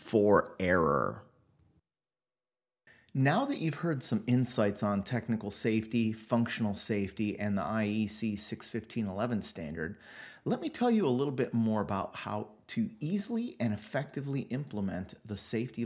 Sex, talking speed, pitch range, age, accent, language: male, 130 wpm, 105-125 Hz, 30-49, American, English